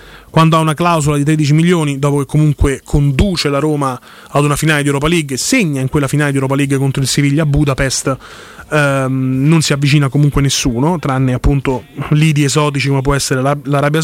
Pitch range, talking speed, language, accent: 140-165 Hz, 190 wpm, Italian, native